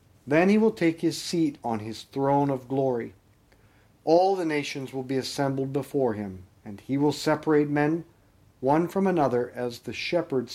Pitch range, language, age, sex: 115-155 Hz, English, 50-69, male